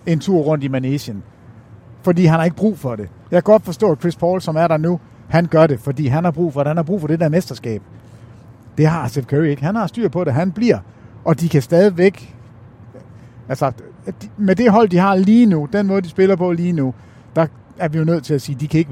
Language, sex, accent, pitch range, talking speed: Danish, male, native, 125-180 Hz, 265 wpm